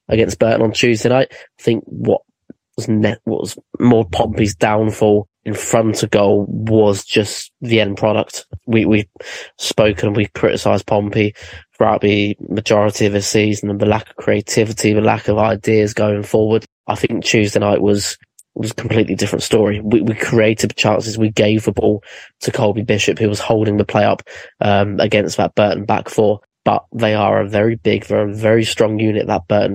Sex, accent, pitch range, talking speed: male, British, 105-115 Hz, 190 wpm